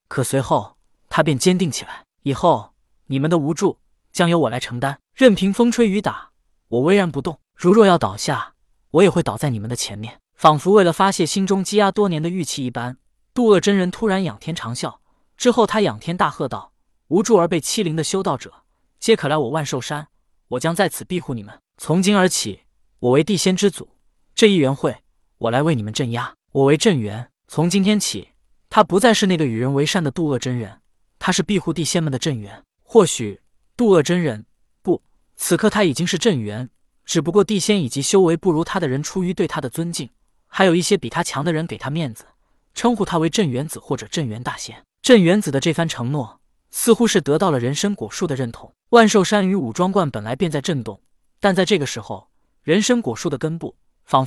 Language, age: Chinese, 20-39